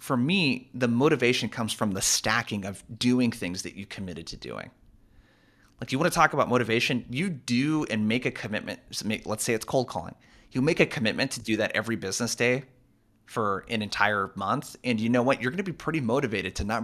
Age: 30-49